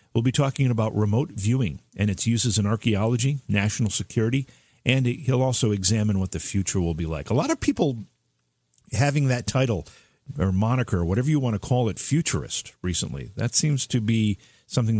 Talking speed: 180 wpm